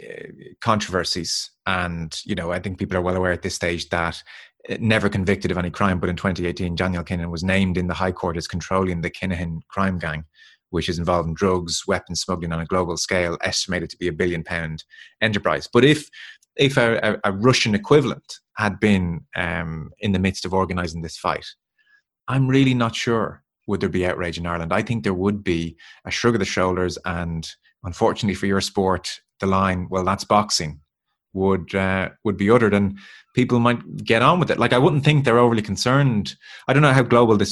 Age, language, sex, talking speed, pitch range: 30-49, English, male, 210 wpm, 90-115 Hz